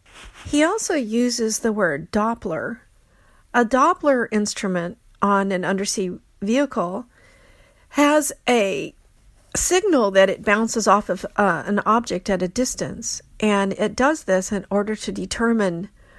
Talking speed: 130 wpm